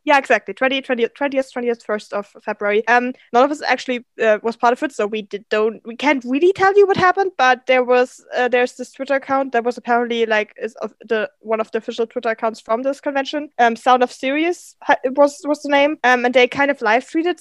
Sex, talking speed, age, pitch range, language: female, 245 wpm, 20-39, 225-270 Hz, English